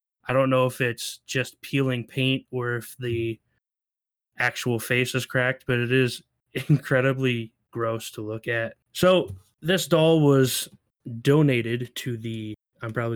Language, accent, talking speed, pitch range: English, American, 145 wpm, 115-135 Hz